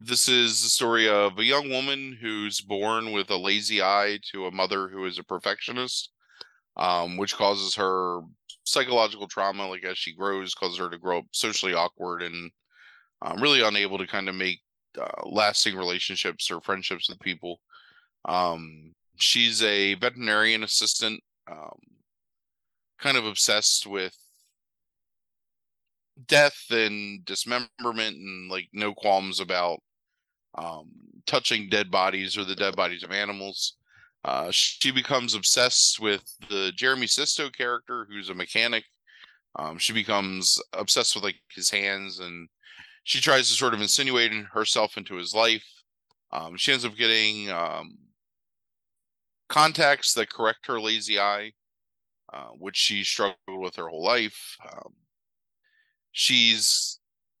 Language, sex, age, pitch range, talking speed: English, male, 30-49, 95-115 Hz, 140 wpm